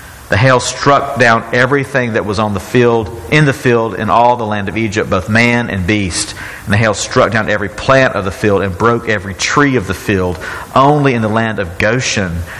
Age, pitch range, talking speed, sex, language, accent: 50-69, 100-125 Hz, 220 wpm, male, English, American